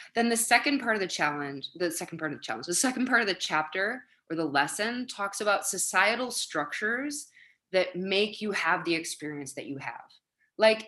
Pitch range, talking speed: 160-235 Hz, 200 wpm